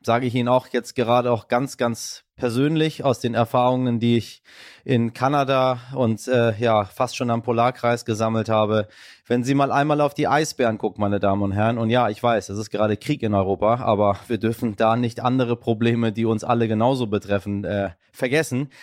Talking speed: 200 wpm